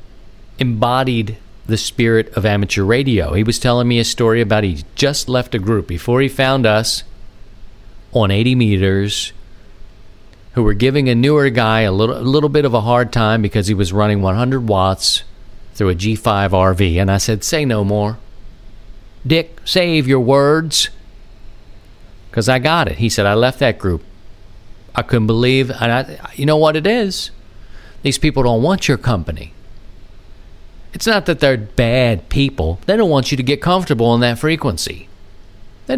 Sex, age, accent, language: male, 50-69, American, English